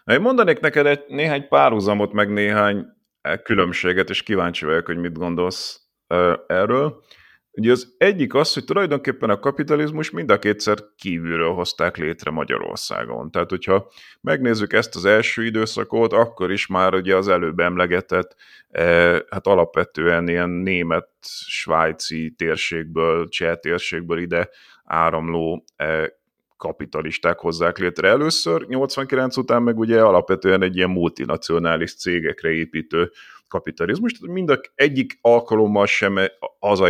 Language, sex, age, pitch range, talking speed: Hungarian, male, 30-49, 85-115 Hz, 130 wpm